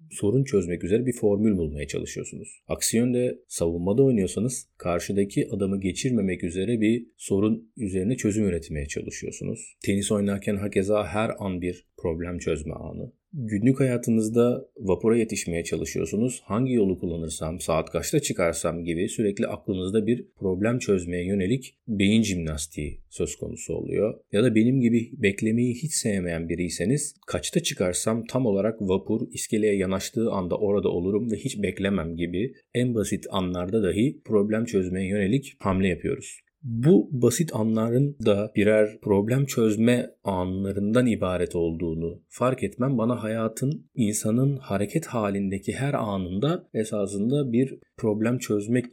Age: 40-59